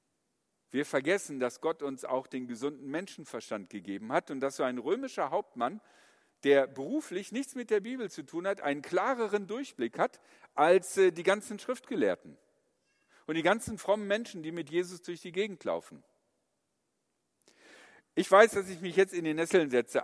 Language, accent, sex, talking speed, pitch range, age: German, German, male, 170 wpm, 155-225 Hz, 50-69